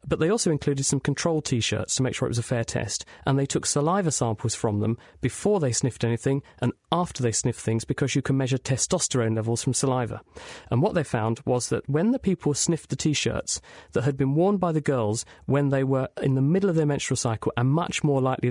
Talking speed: 235 wpm